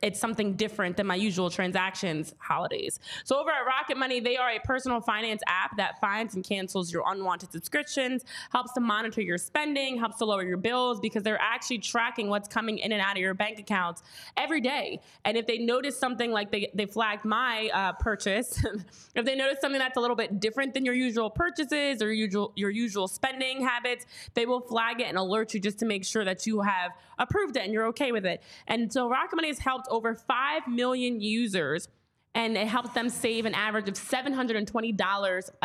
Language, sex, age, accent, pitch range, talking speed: English, female, 20-39, American, 205-245 Hz, 205 wpm